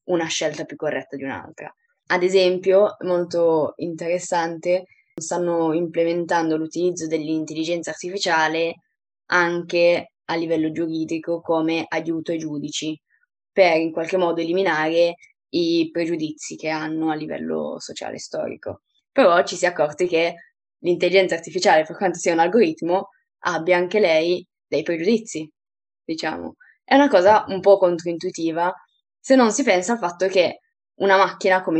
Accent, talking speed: native, 135 wpm